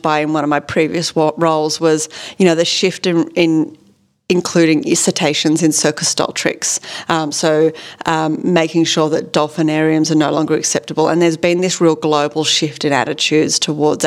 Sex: female